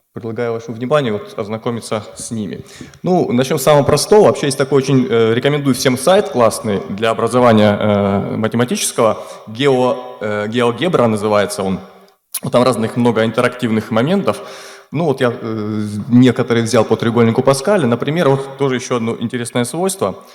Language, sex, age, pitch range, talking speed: Russian, male, 20-39, 110-145 Hz, 145 wpm